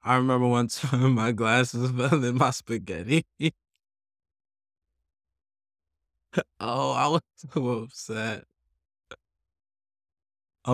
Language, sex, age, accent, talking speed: English, male, 20-39, American, 90 wpm